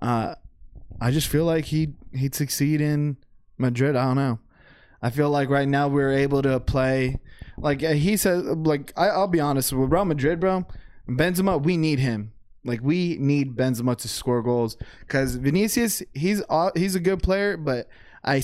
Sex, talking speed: male, 175 wpm